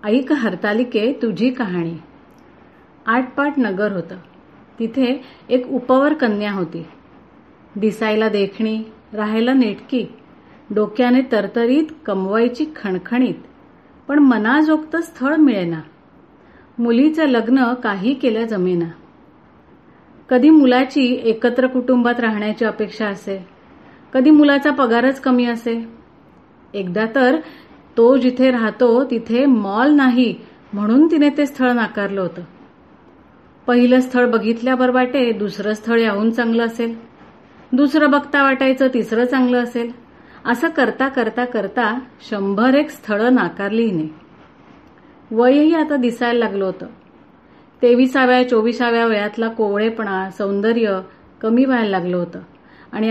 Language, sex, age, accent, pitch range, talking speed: Marathi, female, 30-49, native, 215-260 Hz, 105 wpm